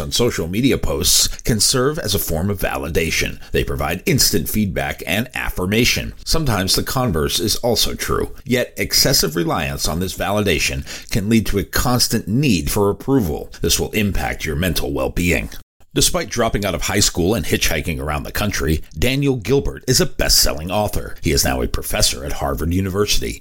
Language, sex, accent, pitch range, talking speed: English, male, American, 80-110 Hz, 175 wpm